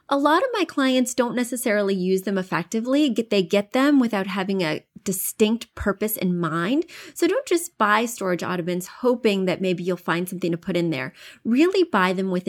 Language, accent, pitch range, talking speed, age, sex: English, American, 180-235 Hz, 190 wpm, 20-39, female